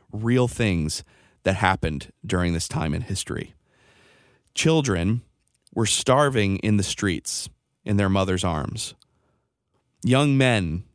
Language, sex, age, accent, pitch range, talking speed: English, male, 30-49, American, 95-125 Hz, 115 wpm